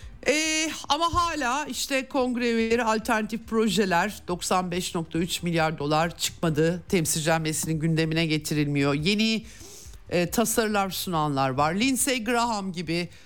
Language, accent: Turkish, native